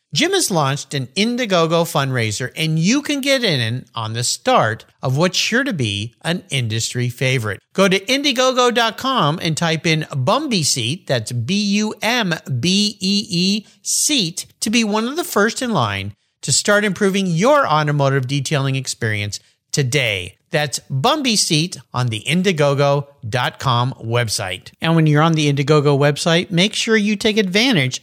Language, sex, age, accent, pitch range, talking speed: English, male, 50-69, American, 135-220 Hz, 155 wpm